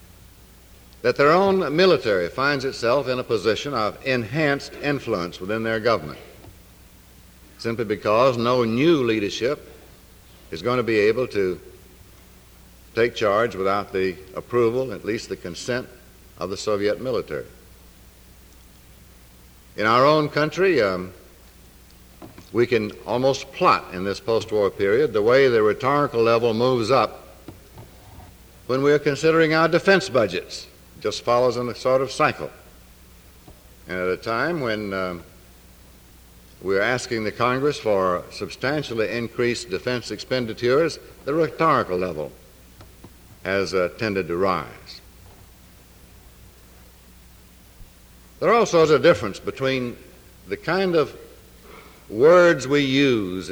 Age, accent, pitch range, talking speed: 60-79, American, 90-135 Hz, 120 wpm